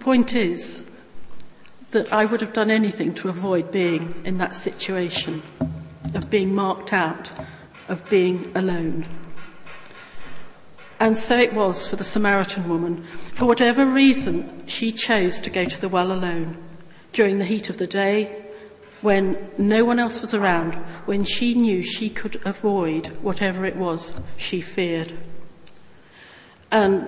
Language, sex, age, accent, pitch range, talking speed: English, female, 50-69, British, 175-215 Hz, 145 wpm